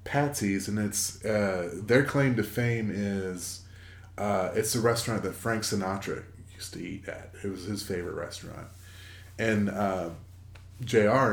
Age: 30-49